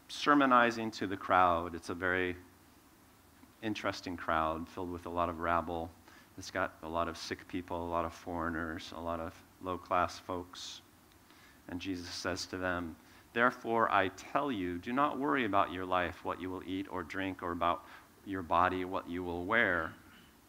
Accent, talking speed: American, 175 wpm